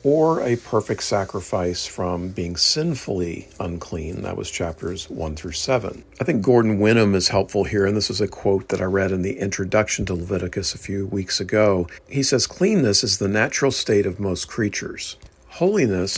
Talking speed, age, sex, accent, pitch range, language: 180 wpm, 50-69, male, American, 95-125 Hz, English